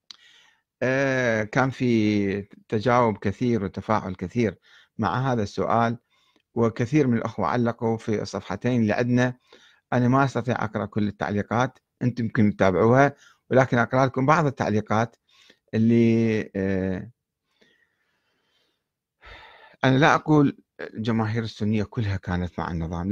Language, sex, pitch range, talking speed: Arabic, male, 105-140 Hz, 105 wpm